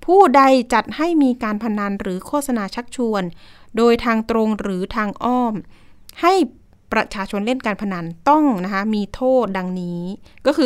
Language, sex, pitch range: Thai, female, 200-260 Hz